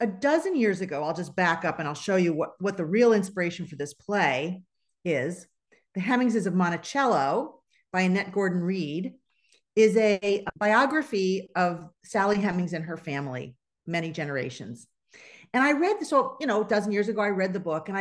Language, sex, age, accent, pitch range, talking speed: English, female, 50-69, American, 175-230 Hz, 185 wpm